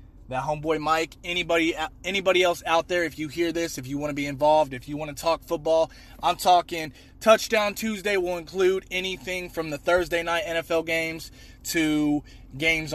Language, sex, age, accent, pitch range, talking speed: English, male, 20-39, American, 135-165 Hz, 180 wpm